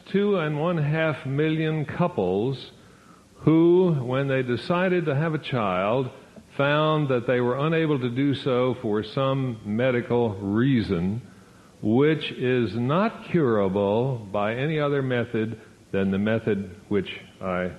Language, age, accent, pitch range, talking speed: English, 60-79, American, 115-160 Hz, 130 wpm